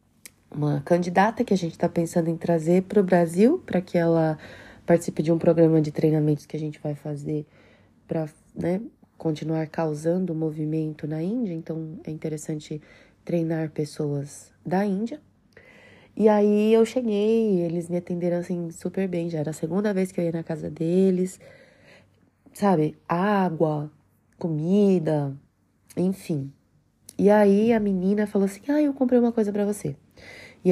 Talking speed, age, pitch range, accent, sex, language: 155 wpm, 20-39, 165-205 Hz, Brazilian, female, Portuguese